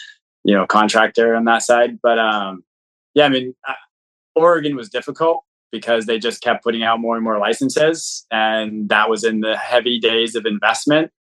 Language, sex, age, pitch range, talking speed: English, male, 20-39, 110-125 Hz, 175 wpm